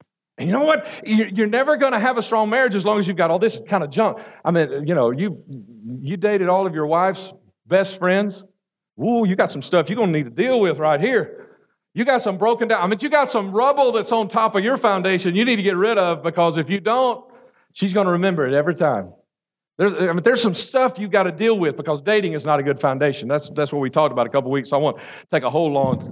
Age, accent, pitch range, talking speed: 50-69, American, 140-210 Hz, 270 wpm